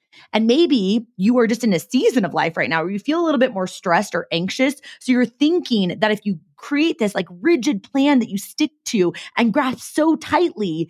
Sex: female